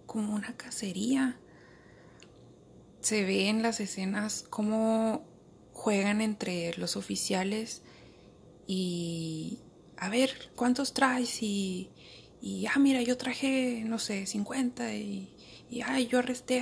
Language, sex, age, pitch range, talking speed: Spanish, female, 20-39, 180-245 Hz, 115 wpm